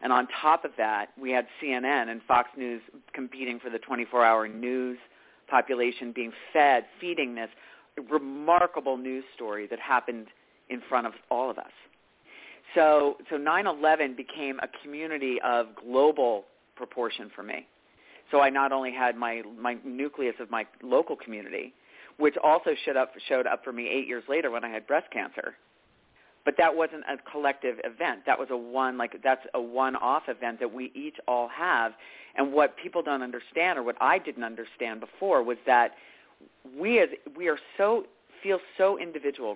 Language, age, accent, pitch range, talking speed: English, 40-59, American, 120-155 Hz, 170 wpm